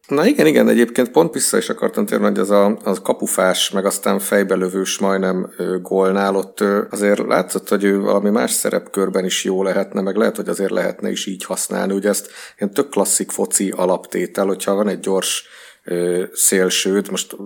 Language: Hungarian